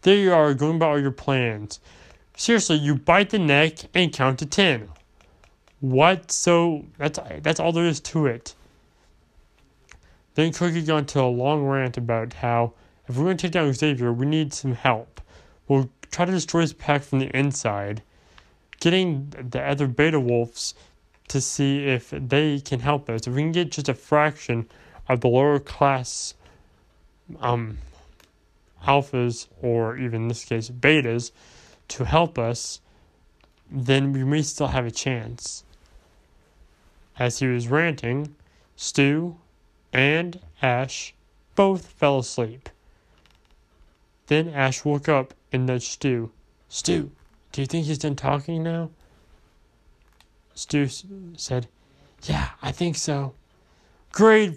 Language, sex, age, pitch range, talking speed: English, male, 20-39, 115-155 Hz, 140 wpm